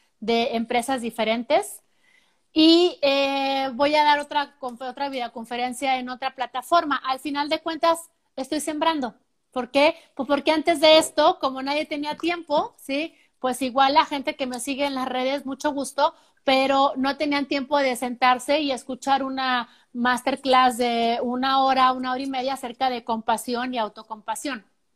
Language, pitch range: Spanish, 235-285 Hz